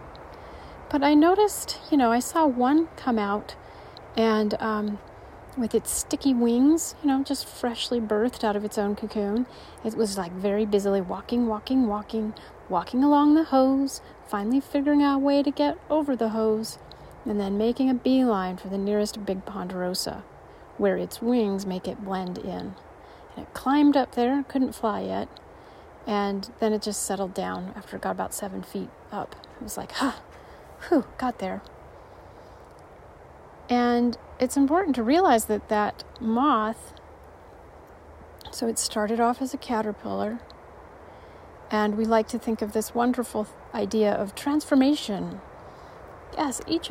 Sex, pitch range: female, 210-275 Hz